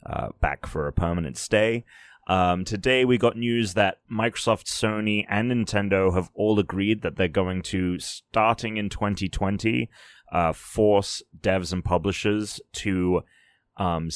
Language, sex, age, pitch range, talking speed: English, male, 30-49, 85-105 Hz, 140 wpm